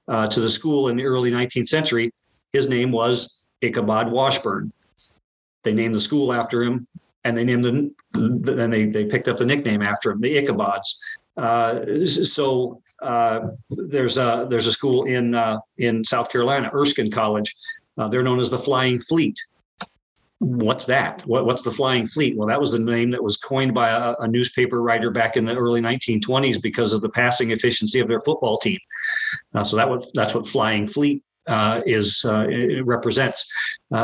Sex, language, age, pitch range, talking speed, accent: male, English, 40-59, 115-130 Hz, 180 wpm, American